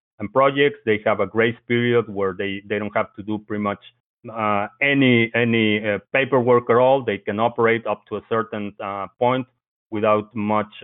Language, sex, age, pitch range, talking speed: English, male, 30-49, 105-125 Hz, 190 wpm